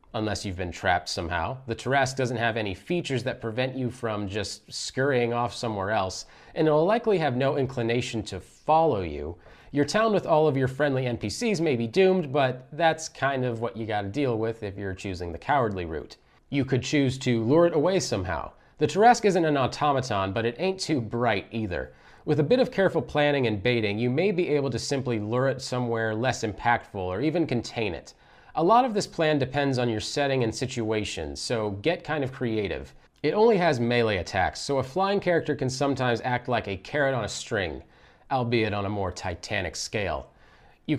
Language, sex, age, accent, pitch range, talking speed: English, male, 30-49, American, 105-145 Hz, 200 wpm